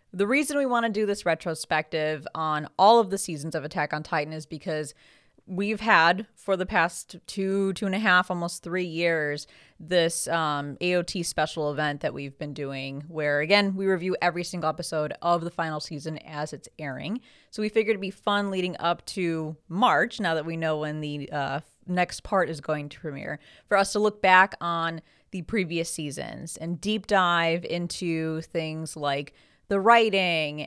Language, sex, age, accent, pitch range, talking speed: English, female, 20-39, American, 155-185 Hz, 185 wpm